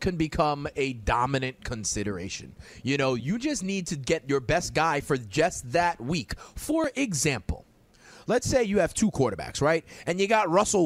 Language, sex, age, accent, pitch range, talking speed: English, male, 30-49, American, 170-260 Hz, 175 wpm